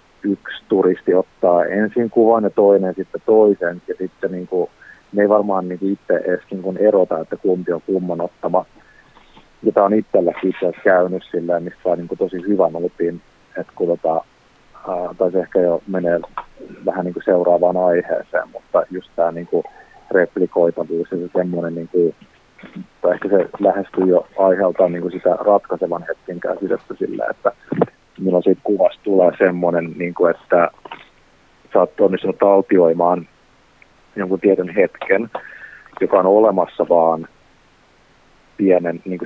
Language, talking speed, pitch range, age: Finnish, 140 wpm, 85-95 Hz, 30-49